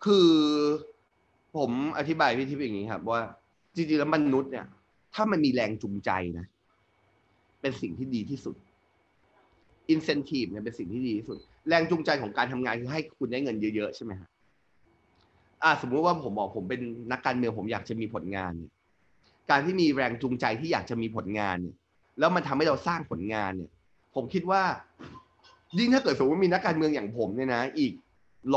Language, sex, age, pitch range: Thai, male, 20-39, 110-180 Hz